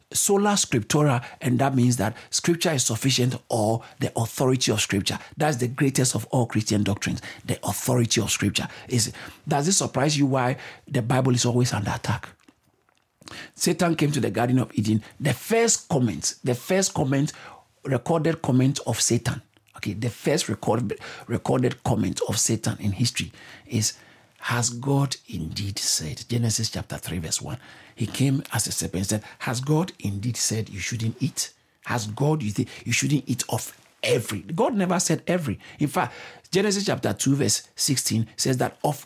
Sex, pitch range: male, 115-155 Hz